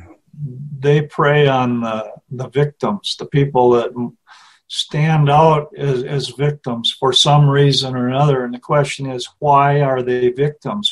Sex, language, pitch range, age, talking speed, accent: male, English, 135-155 Hz, 50-69, 150 wpm, American